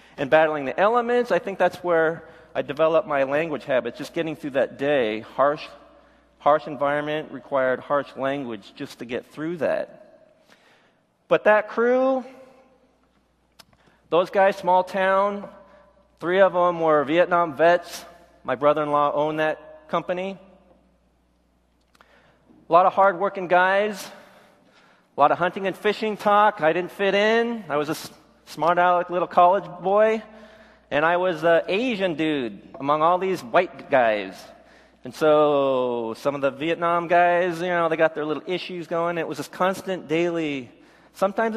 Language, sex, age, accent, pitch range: Korean, male, 40-59, American, 145-190 Hz